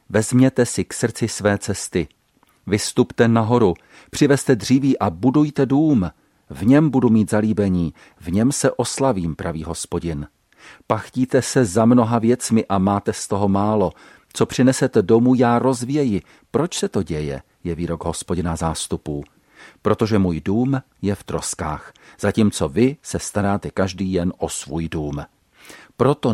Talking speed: 145 wpm